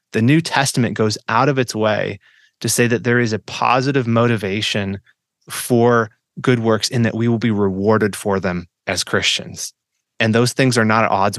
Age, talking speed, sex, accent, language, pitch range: 30-49, 190 wpm, male, American, English, 115-165 Hz